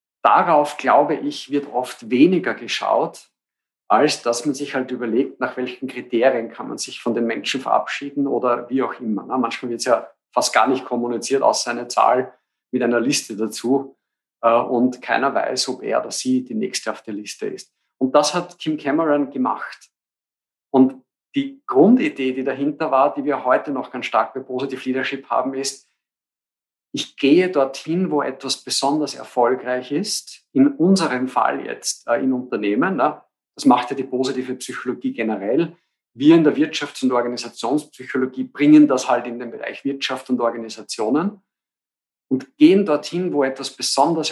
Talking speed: 160 wpm